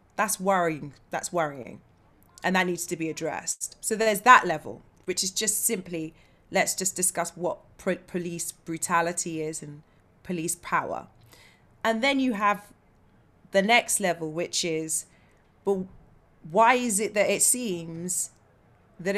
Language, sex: English, female